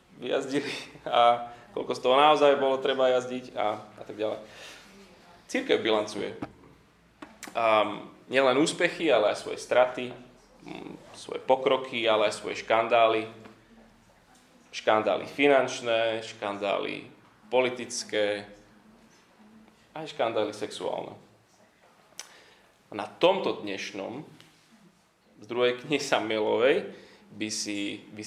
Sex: male